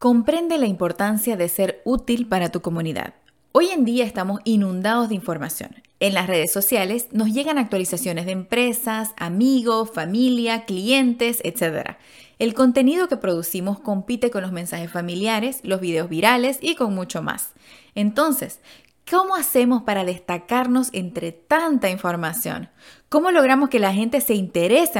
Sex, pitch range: female, 185-255 Hz